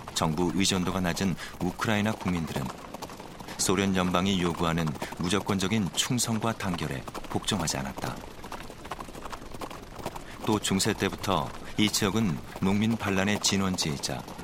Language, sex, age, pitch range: Korean, male, 40-59, 85-105 Hz